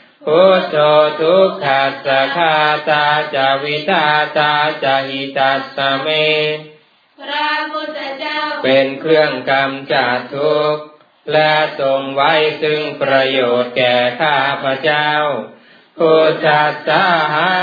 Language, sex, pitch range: Thai, male, 140-155 Hz